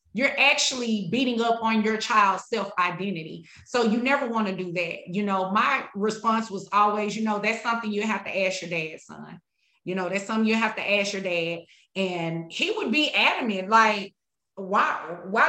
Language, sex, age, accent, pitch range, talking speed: English, female, 30-49, American, 195-245 Hz, 195 wpm